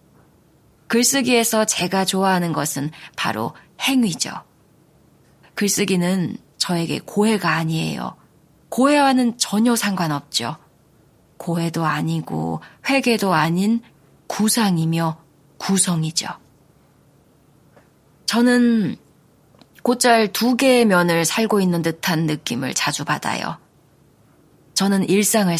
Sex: female